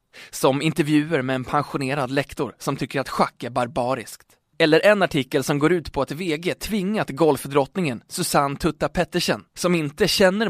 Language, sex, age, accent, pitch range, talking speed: Swedish, male, 20-39, native, 130-175 Hz, 160 wpm